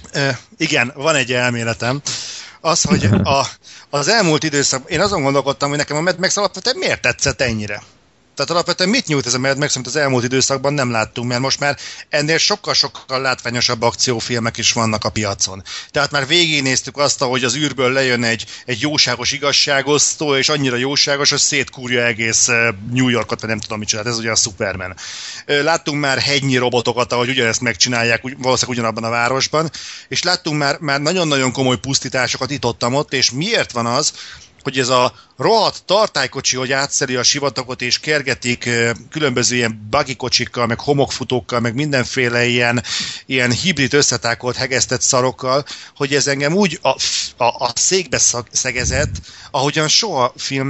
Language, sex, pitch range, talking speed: Hungarian, male, 120-145 Hz, 160 wpm